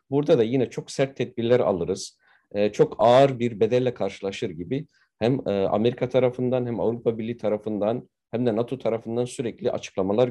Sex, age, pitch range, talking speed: male, 50-69, 110-140 Hz, 150 wpm